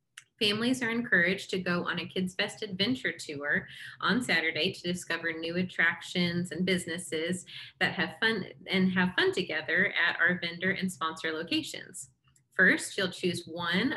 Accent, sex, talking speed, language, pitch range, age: American, female, 155 wpm, English, 165-200 Hz, 30-49